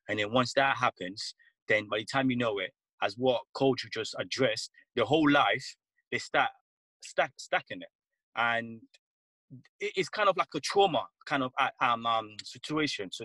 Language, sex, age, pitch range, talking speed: English, male, 30-49, 130-175 Hz, 170 wpm